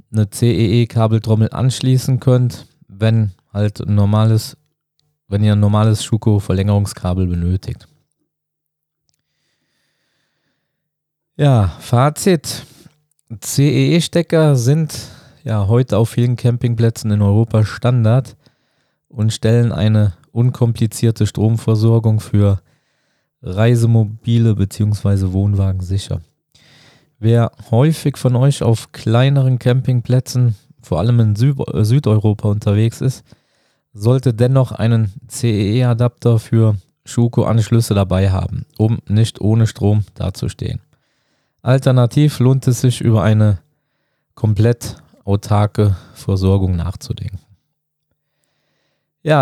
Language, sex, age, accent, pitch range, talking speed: German, male, 20-39, German, 110-135 Hz, 90 wpm